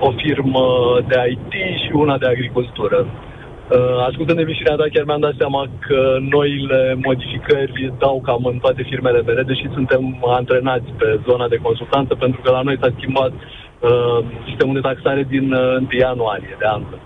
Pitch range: 125-155 Hz